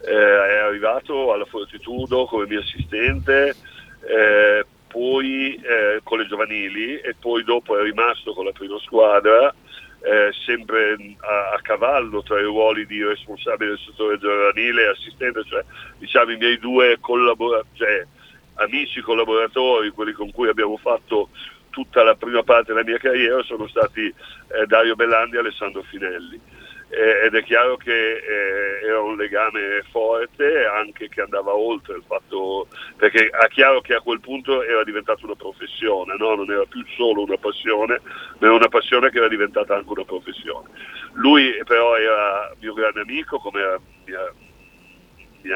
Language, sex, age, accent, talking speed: Italian, male, 50-69, native, 160 wpm